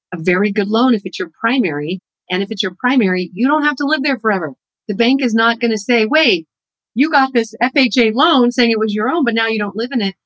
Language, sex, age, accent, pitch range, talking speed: English, female, 40-59, American, 170-225 Hz, 265 wpm